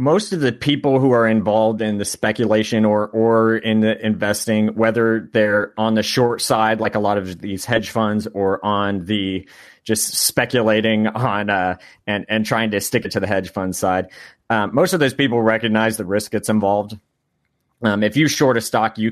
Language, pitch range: English, 100-115 Hz